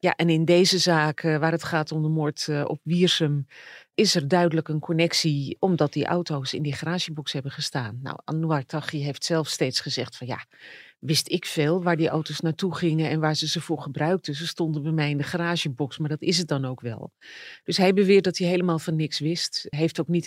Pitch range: 155-180 Hz